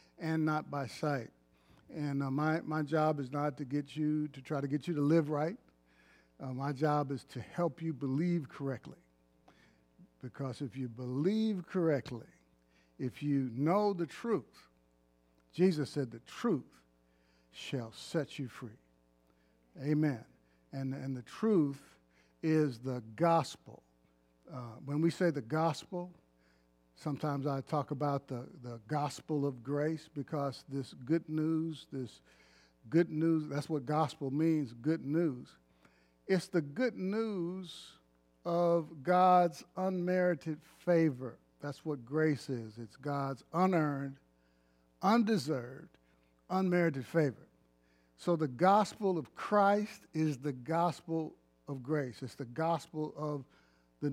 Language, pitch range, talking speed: English, 105-160 Hz, 130 wpm